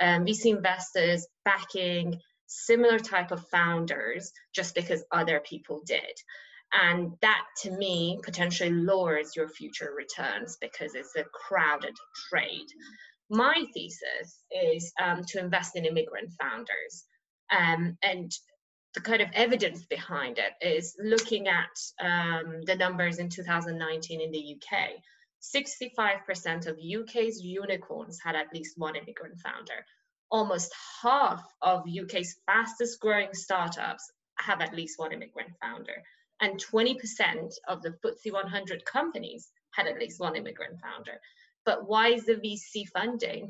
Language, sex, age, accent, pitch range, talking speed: English, female, 20-39, British, 175-225 Hz, 135 wpm